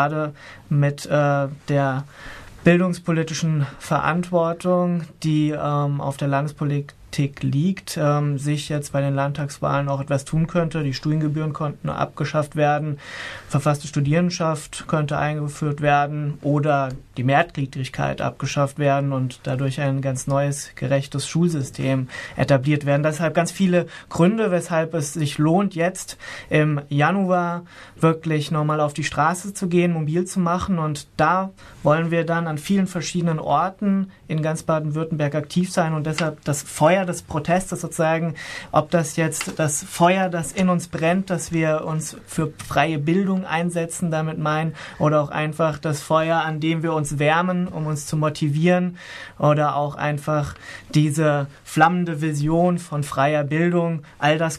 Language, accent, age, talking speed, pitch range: German, German, 20-39, 145 wpm, 145-165 Hz